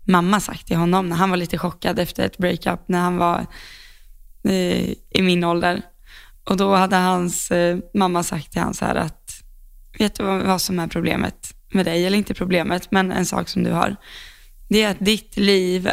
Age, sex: 20-39, female